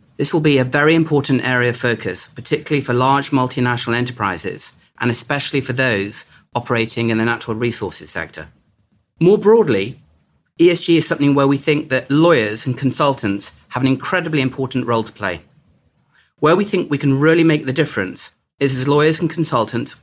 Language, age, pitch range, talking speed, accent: English, 40-59, 120-150 Hz, 170 wpm, British